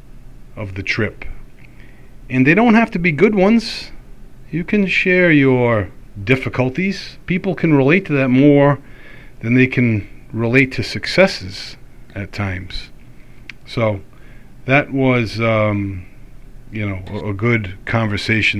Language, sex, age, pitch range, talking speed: English, male, 40-59, 100-130 Hz, 130 wpm